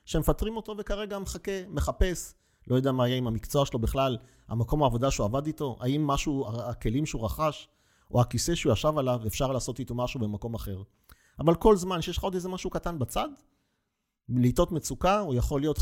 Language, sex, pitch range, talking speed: Hebrew, male, 120-170 Hz, 185 wpm